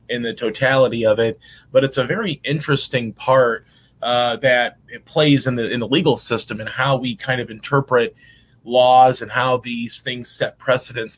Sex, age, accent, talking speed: male, 30-49, American, 175 wpm